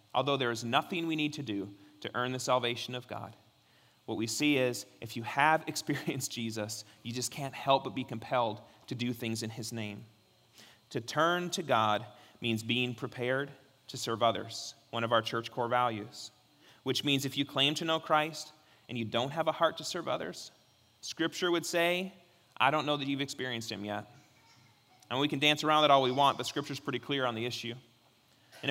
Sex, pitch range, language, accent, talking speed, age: male, 120-170 Hz, English, American, 205 wpm, 30-49